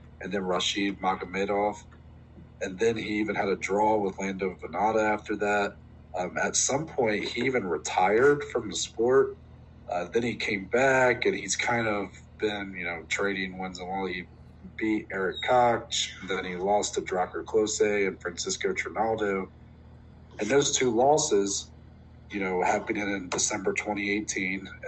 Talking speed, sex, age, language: 160 wpm, male, 40-59, English